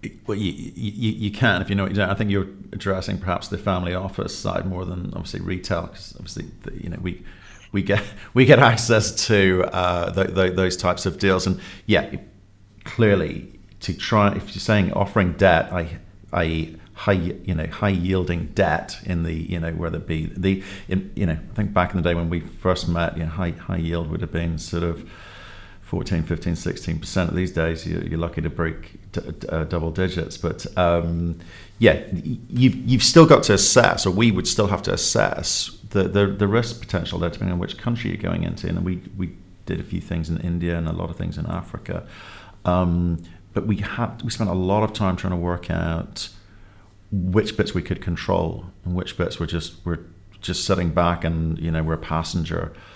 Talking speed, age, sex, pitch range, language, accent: 205 wpm, 50-69, male, 85-100 Hz, English, British